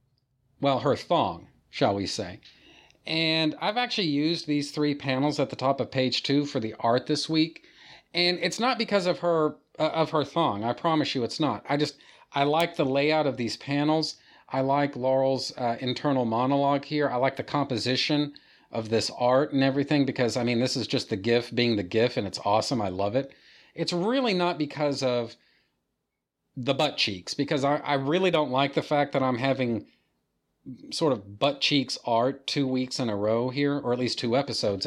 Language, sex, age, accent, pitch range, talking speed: English, male, 40-59, American, 125-155 Hz, 200 wpm